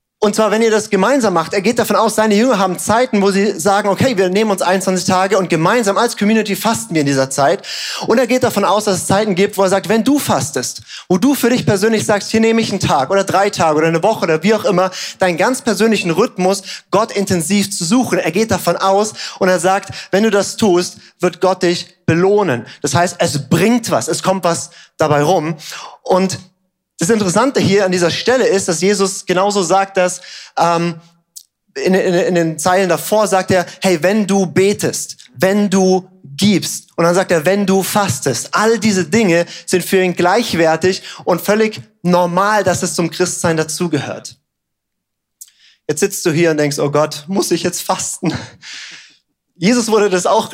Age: 30-49